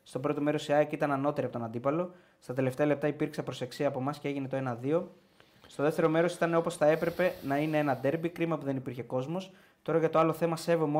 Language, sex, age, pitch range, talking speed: Greek, male, 20-39, 135-160 Hz, 235 wpm